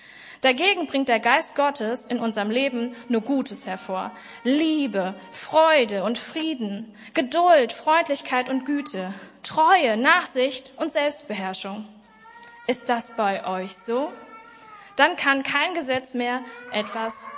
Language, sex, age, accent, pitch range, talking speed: German, female, 20-39, German, 220-290 Hz, 115 wpm